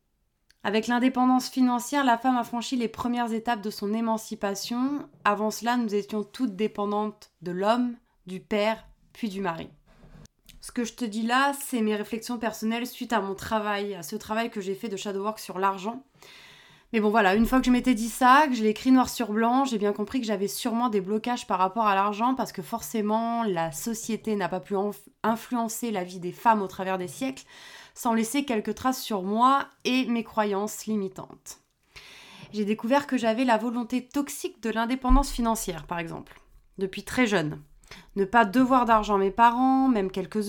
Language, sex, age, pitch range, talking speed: French, female, 20-39, 205-245 Hz, 195 wpm